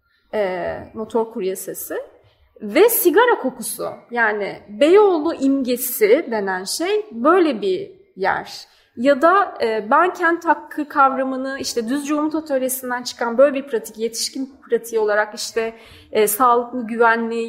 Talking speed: 115 wpm